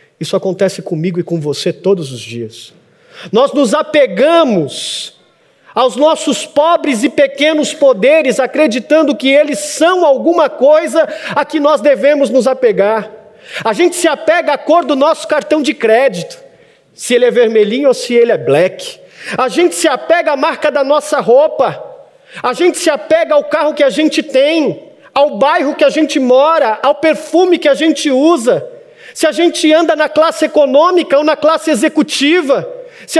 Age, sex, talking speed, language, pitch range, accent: 40-59, male, 170 wpm, Portuguese, 245-315 Hz, Brazilian